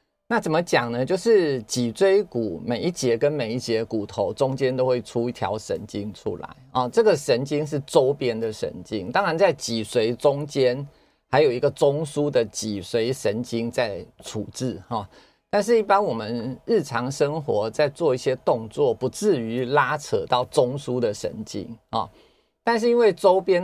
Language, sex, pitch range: Chinese, male, 115-155 Hz